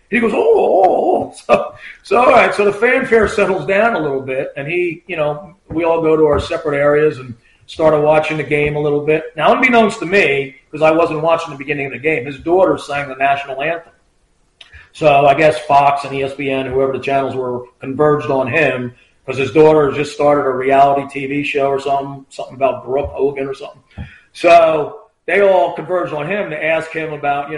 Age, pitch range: 40-59, 140-175 Hz